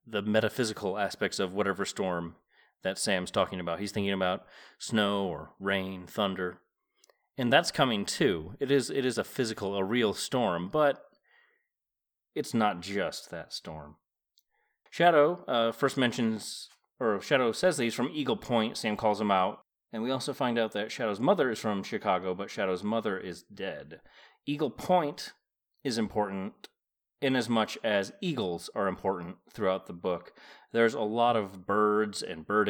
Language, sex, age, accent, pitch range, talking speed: English, male, 30-49, American, 100-125 Hz, 160 wpm